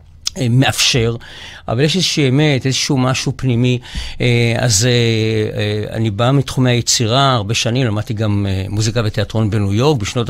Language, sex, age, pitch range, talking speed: Hebrew, male, 60-79, 105-135 Hz, 130 wpm